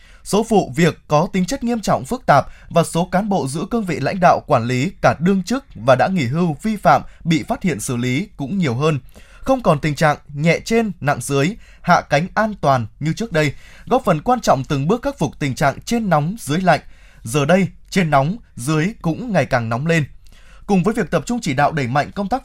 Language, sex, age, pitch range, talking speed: Vietnamese, male, 20-39, 140-205 Hz, 235 wpm